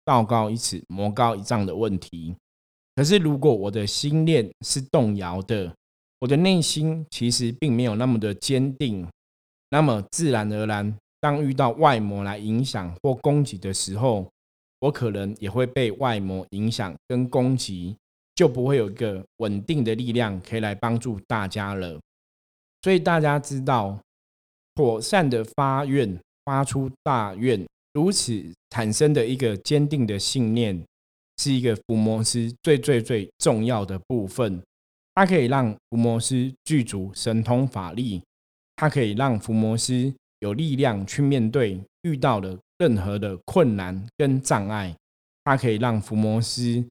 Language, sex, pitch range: Chinese, male, 100-135 Hz